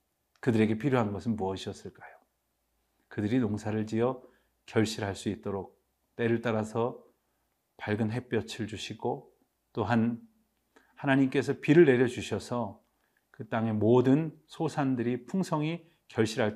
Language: Korean